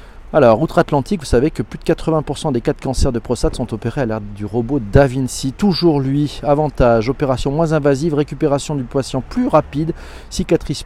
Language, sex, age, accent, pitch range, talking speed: French, male, 40-59, French, 120-165 Hz, 190 wpm